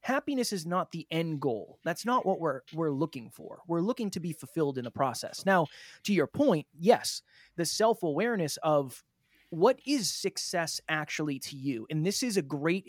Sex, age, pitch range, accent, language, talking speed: male, 20-39, 145-190 Hz, American, English, 185 wpm